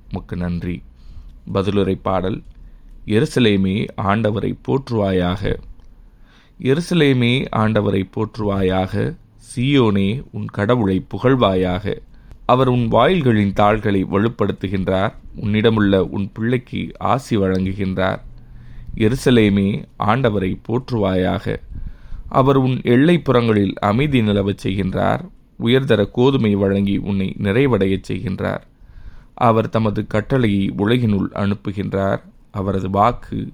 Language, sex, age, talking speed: Tamil, male, 20-39, 80 wpm